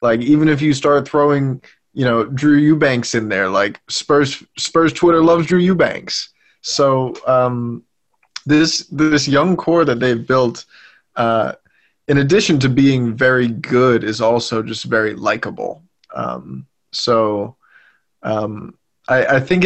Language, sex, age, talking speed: English, male, 20-39, 140 wpm